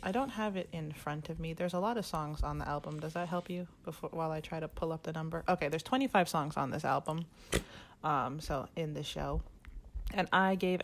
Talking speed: 245 wpm